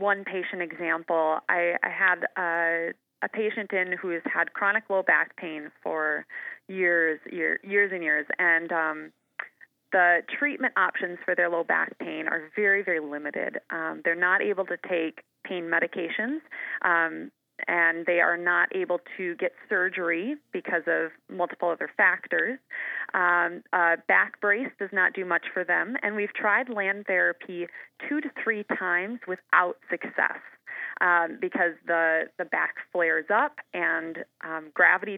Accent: American